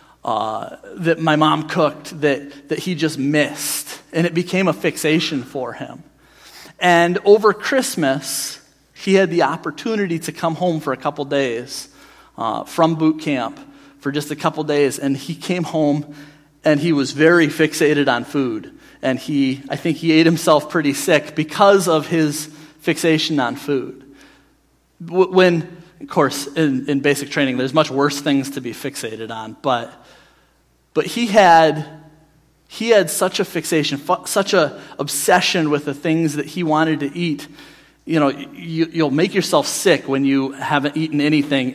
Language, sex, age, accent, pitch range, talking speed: English, male, 40-59, American, 140-170 Hz, 165 wpm